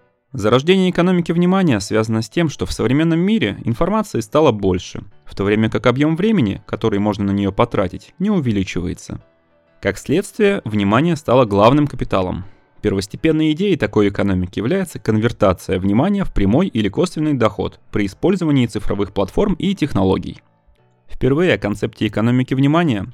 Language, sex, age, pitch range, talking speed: Russian, male, 20-39, 100-150 Hz, 145 wpm